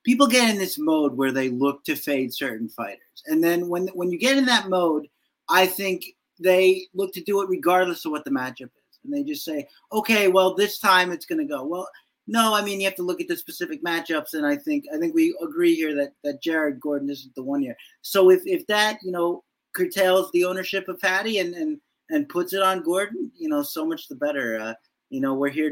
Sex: male